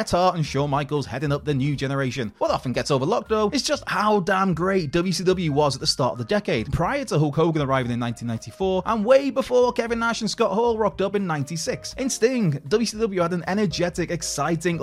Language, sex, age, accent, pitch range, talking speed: English, male, 20-39, British, 150-210 Hz, 215 wpm